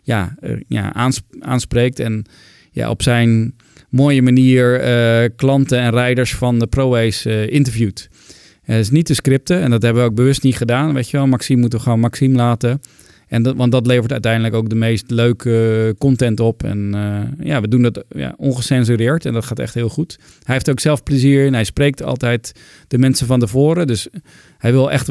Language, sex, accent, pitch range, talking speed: Dutch, male, Dutch, 105-130 Hz, 205 wpm